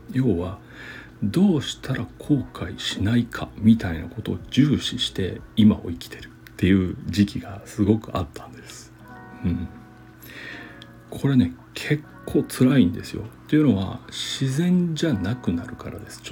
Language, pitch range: Japanese, 85-130 Hz